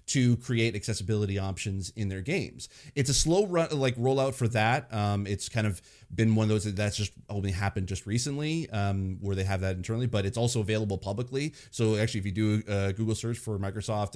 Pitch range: 100-120 Hz